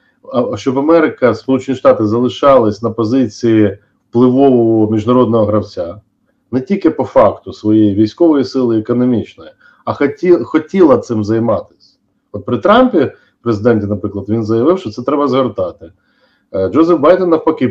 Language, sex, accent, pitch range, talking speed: Ukrainian, male, native, 105-145 Hz, 130 wpm